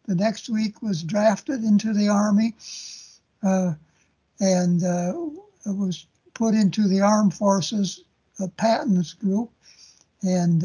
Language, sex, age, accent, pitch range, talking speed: English, male, 60-79, American, 190-215 Hz, 120 wpm